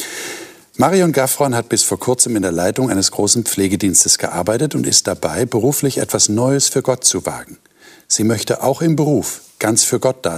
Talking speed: 185 wpm